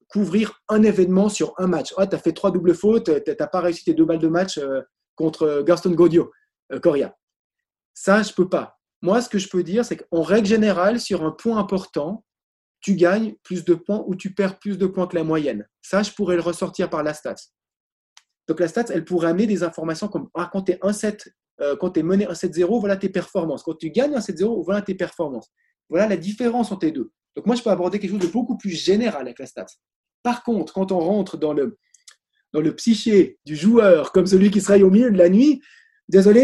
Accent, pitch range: French, 170-215 Hz